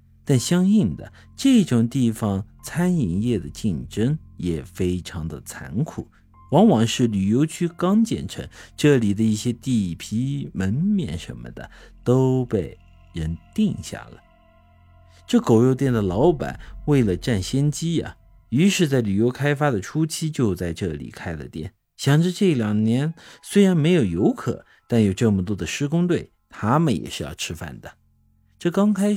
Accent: native